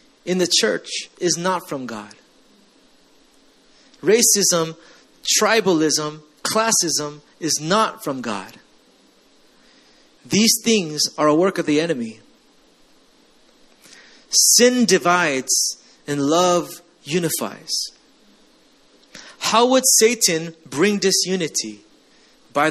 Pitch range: 150-220 Hz